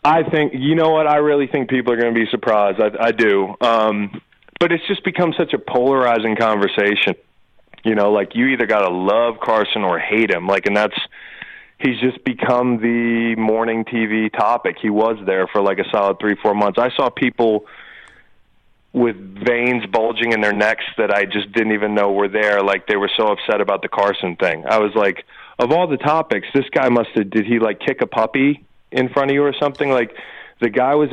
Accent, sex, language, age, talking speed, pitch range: American, male, English, 30-49, 215 wpm, 105-135 Hz